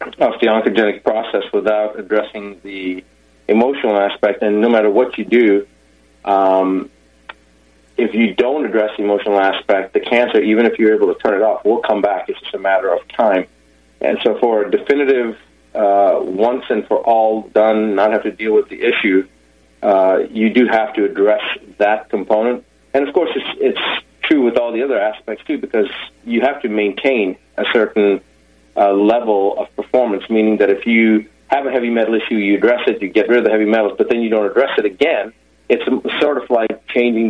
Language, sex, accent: English, male, American